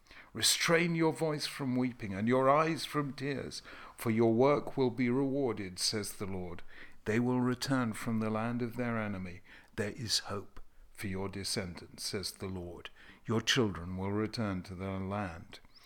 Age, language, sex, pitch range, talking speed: 60-79, English, male, 100-130 Hz, 165 wpm